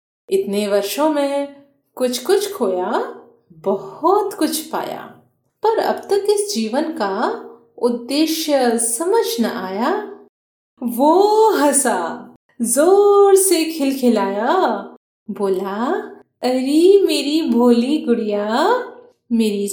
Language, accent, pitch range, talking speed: Hindi, native, 220-330 Hz, 90 wpm